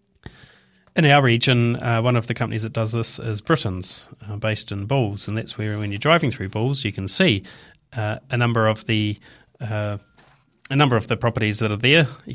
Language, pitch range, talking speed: English, 105-130 Hz, 210 wpm